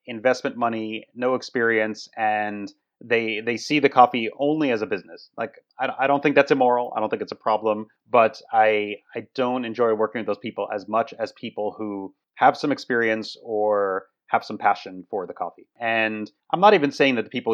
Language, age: English, 30-49